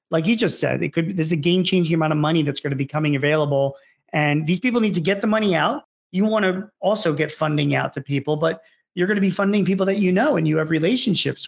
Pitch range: 155-190 Hz